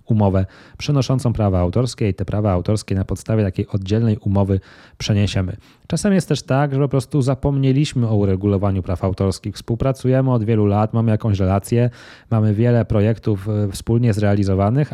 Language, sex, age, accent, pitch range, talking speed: Polish, male, 20-39, native, 105-130 Hz, 155 wpm